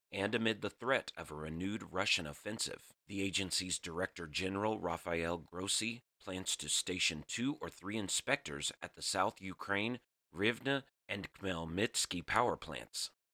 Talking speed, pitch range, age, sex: 140 wpm, 85-105 Hz, 40-59, male